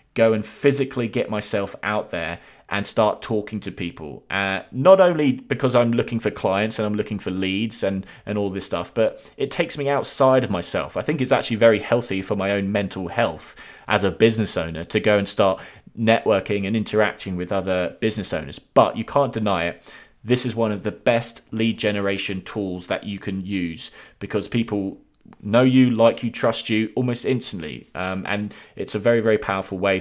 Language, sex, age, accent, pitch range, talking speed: English, male, 20-39, British, 95-115 Hz, 200 wpm